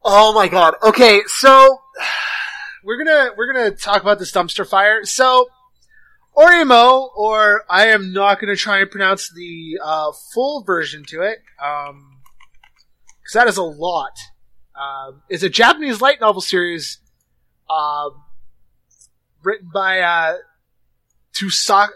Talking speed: 130 wpm